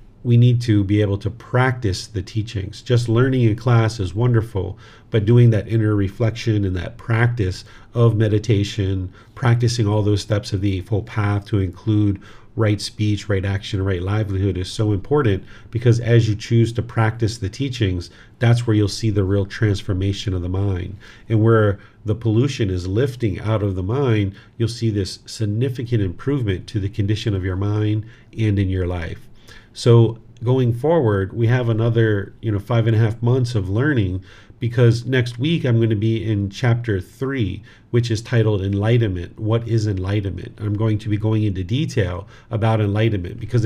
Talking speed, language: 175 wpm, English